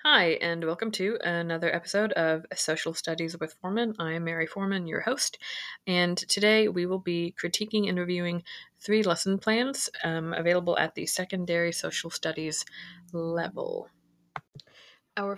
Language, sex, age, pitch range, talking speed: English, female, 20-39, 160-185 Hz, 145 wpm